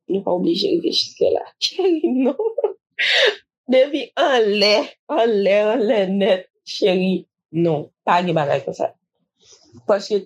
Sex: female